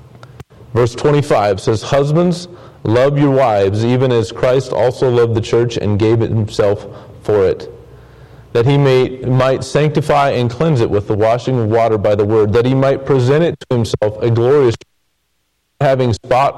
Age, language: 40-59, English